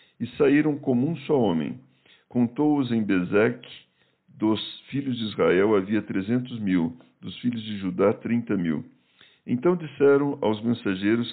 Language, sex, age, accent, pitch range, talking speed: Portuguese, male, 60-79, Brazilian, 100-130 Hz, 140 wpm